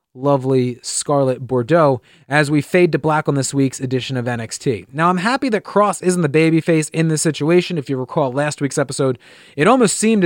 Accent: American